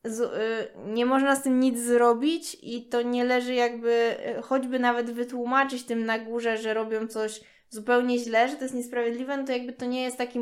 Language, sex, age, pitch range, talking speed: Polish, female, 20-39, 215-240 Hz, 200 wpm